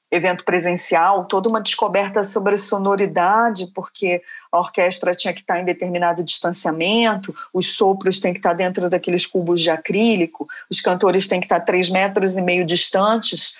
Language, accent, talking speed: Portuguese, Brazilian, 165 wpm